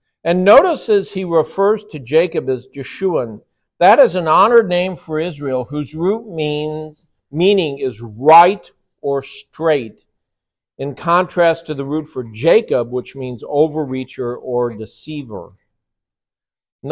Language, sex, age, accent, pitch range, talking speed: English, male, 50-69, American, 125-165 Hz, 130 wpm